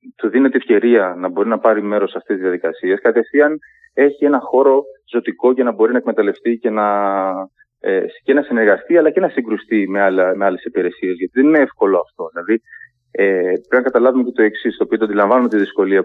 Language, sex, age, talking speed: Greek, male, 30-49, 190 wpm